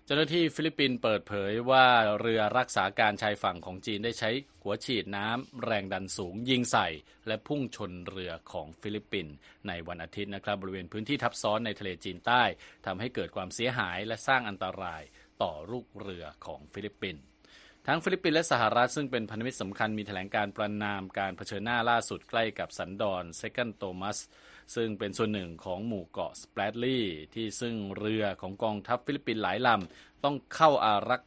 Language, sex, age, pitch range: Thai, male, 20-39, 95-120 Hz